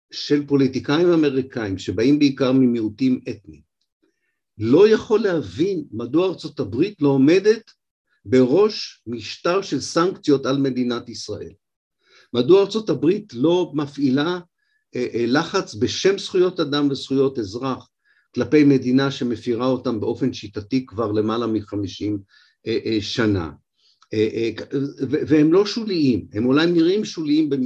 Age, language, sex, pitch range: 50-69, Hebrew, male, 120-175 Hz